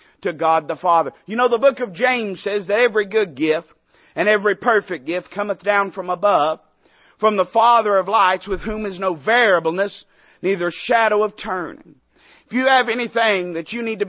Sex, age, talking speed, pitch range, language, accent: male, 40-59, 190 wpm, 195-230 Hz, English, American